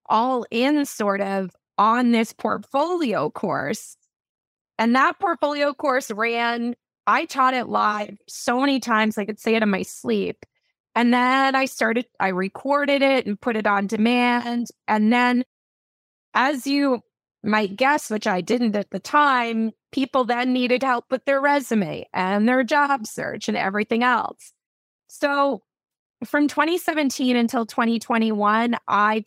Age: 20-39